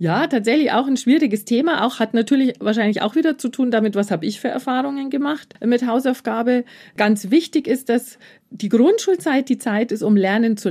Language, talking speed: German, 195 wpm